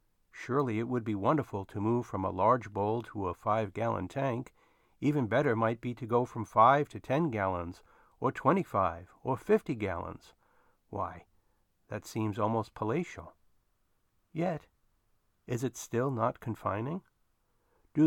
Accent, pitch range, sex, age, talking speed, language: American, 105-140 Hz, male, 50-69, 145 wpm, English